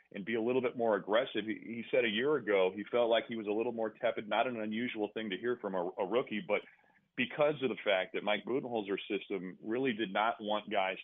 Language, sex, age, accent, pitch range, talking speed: English, male, 30-49, American, 100-120 Hz, 250 wpm